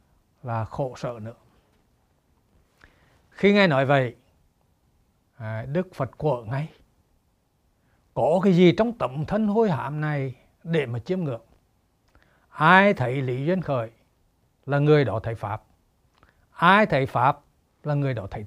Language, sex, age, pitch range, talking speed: Vietnamese, male, 60-79, 115-175 Hz, 140 wpm